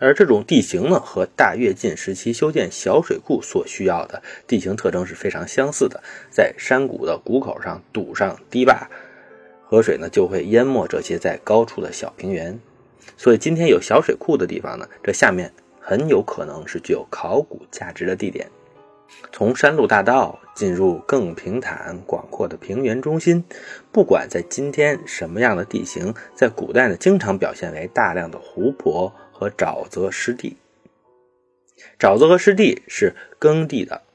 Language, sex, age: Chinese, male, 30-49